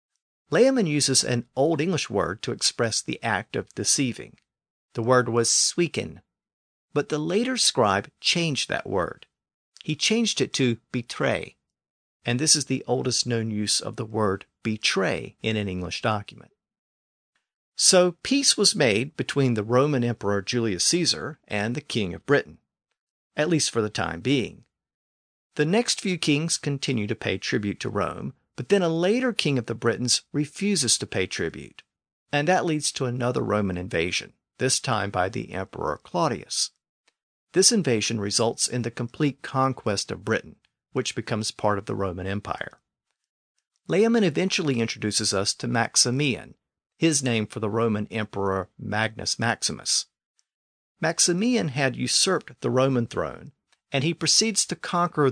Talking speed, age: 150 wpm, 50-69